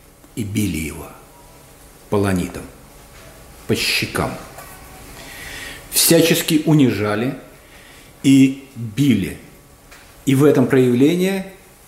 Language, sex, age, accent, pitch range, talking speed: Russian, male, 50-69, native, 115-160 Hz, 70 wpm